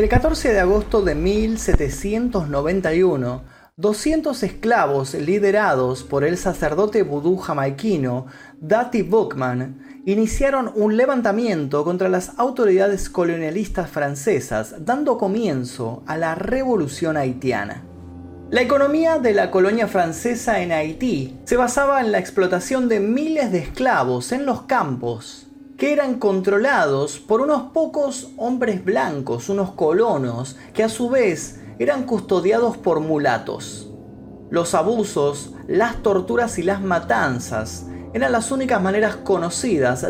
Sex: male